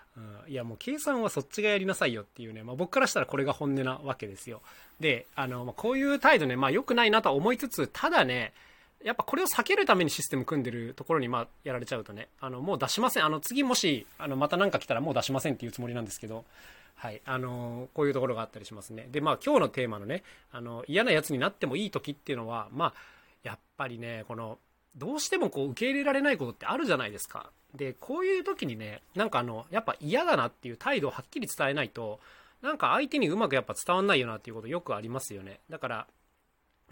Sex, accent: male, native